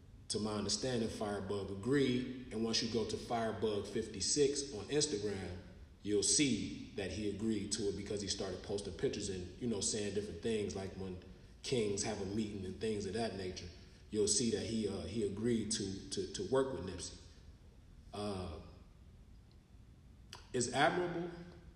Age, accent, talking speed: 30-49, American, 160 wpm